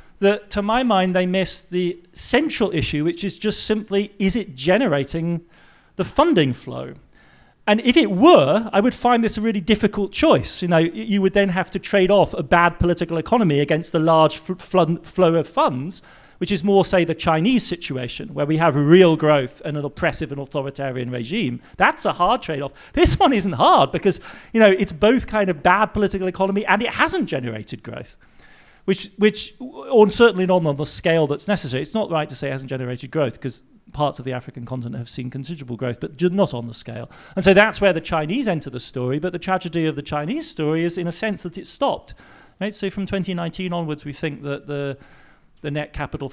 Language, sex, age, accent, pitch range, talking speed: English, male, 40-59, British, 140-195 Hz, 205 wpm